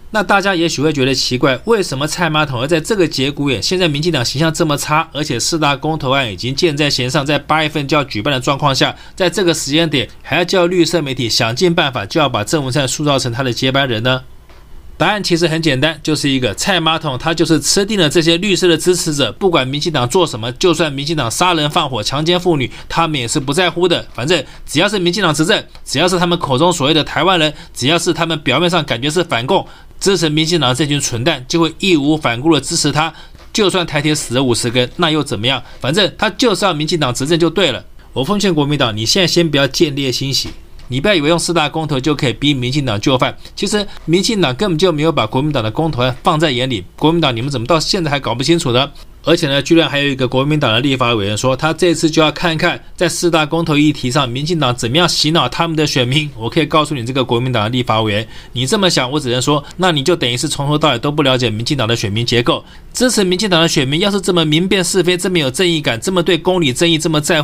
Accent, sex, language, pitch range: native, male, Chinese, 130-170 Hz